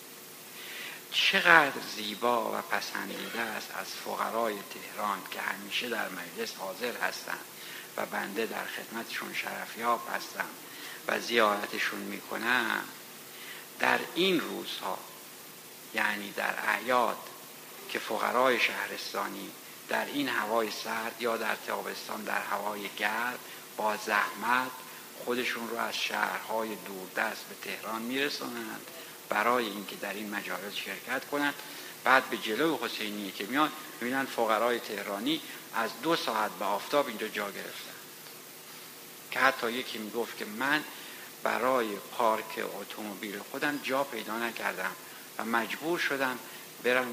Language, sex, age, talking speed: Persian, male, 60-79, 120 wpm